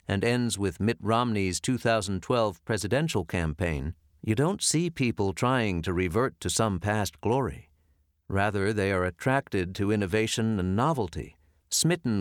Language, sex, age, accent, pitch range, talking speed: English, male, 50-69, American, 85-120 Hz, 140 wpm